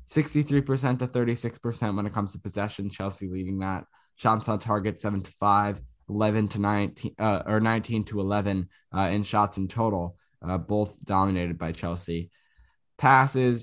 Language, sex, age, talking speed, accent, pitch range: English, male, 10-29, 155 wpm, American, 95-125 Hz